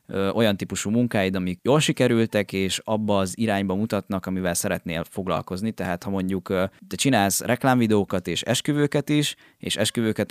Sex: male